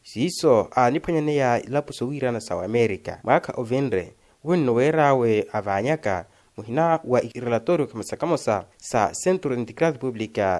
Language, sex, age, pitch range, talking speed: Portuguese, male, 30-49, 110-150 Hz, 110 wpm